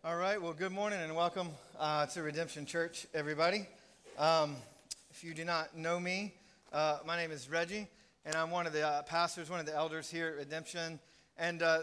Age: 40-59